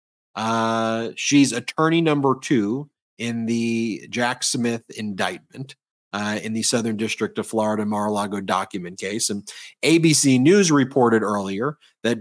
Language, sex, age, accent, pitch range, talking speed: English, male, 30-49, American, 105-130 Hz, 130 wpm